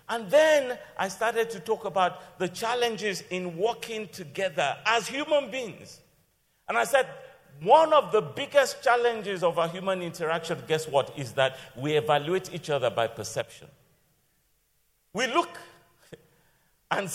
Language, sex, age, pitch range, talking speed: English, male, 50-69, 135-220 Hz, 140 wpm